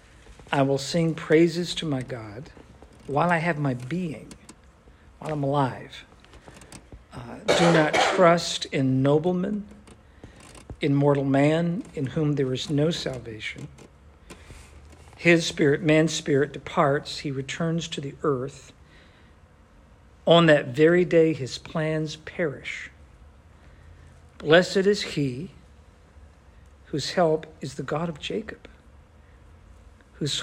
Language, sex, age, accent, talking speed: English, male, 50-69, American, 115 wpm